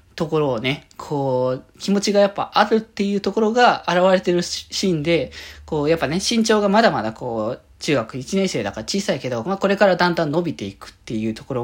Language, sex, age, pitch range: Japanese, male, 20-39, 135-190 Hz